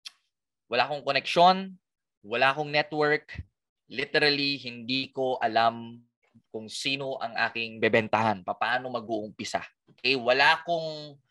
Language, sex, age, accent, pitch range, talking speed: Filipino, male, 20-39, native, 115-150 Hz, 105 wpm